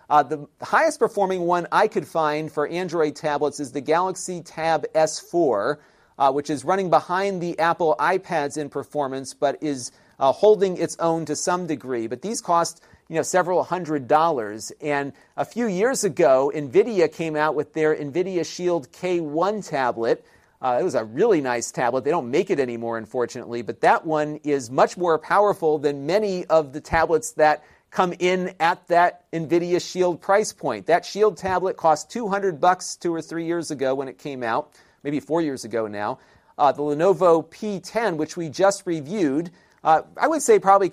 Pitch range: 145-180 Hz